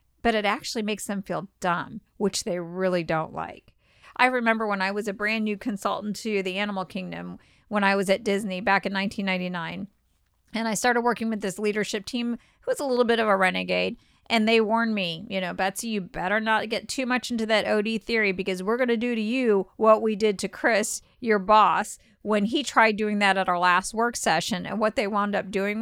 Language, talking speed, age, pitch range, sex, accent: English, 220 wpm, 50-69, 195-225 Hz, female, American